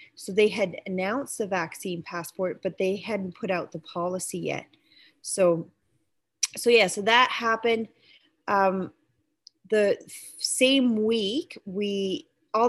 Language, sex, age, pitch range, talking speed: English, female, 30-49, 185-235 Hz, 130 wpm